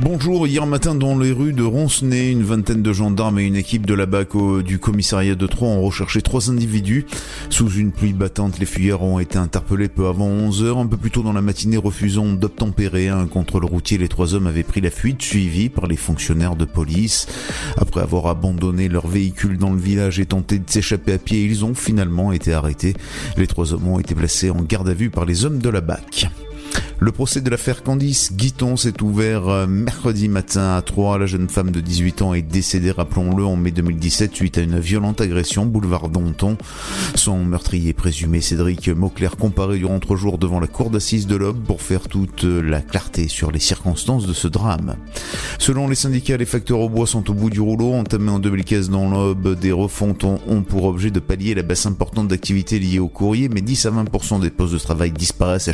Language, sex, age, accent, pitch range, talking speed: French, male, 30-49, French, 90-110 Hz, 210 wpm